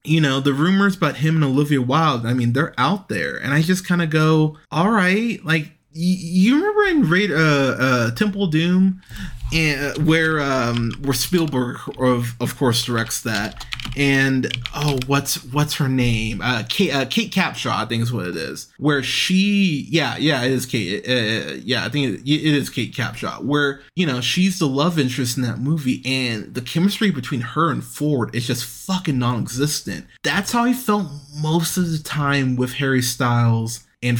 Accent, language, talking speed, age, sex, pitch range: American, English, 190 wpm, 20-39, male, 120-155 Hz